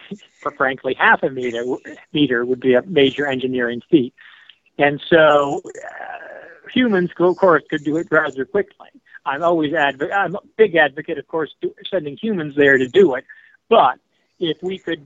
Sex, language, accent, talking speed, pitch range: male, English, American, 165 wpm, 130-165 Hz